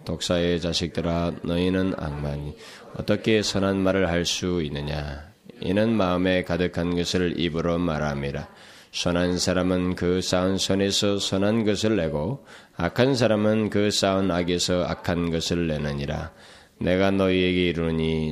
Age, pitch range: 20-39, 80-95 Hz